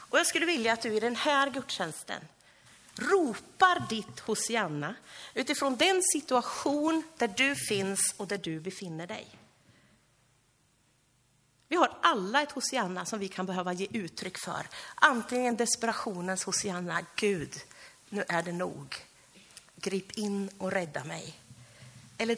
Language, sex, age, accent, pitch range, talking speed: Swedish, female, 40-59, native, 175-235 Hz, 135 wpm